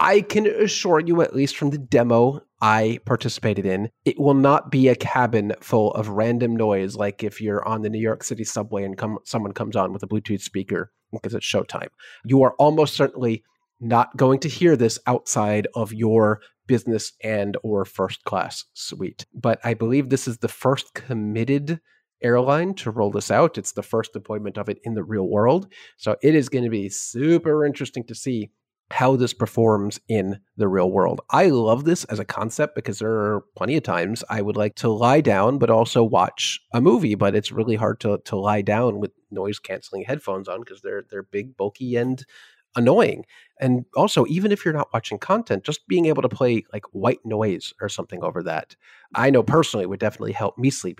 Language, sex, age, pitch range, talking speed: English, male, 30-49, 105-135 Hz, 200 wpm